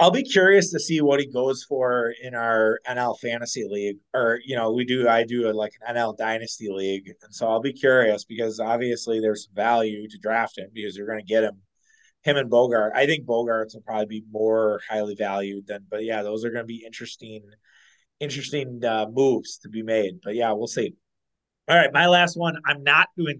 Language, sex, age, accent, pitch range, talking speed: English, male, 30-49, American, 110-125 Hz, 215 wpm